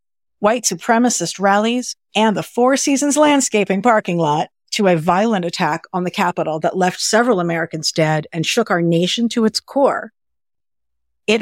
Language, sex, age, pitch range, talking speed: English, female, 50-69, 175-235 Hz, 160 wpm